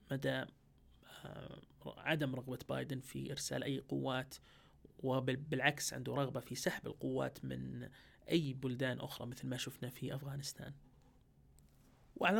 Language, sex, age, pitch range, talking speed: Arabic, male, 30-49, 130-170 Hz, 115 wpm